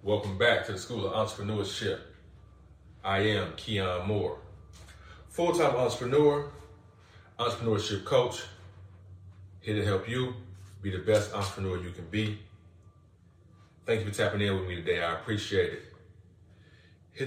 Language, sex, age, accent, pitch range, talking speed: English, male, 20-39, American, 90-105 Hz, 130 wpm